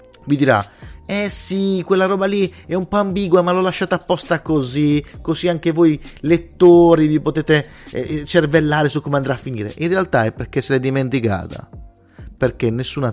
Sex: male